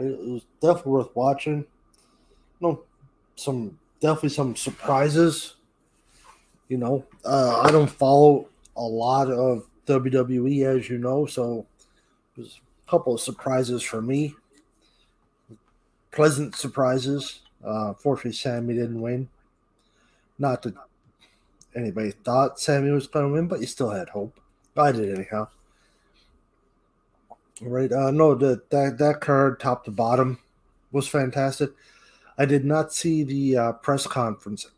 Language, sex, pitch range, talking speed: English, male, 115-140 Hz, 135 wpm